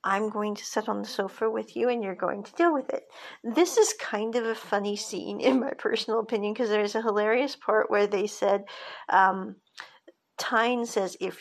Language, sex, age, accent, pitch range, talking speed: English, female, 50-69, American, 210-265 Hz, 210 wpm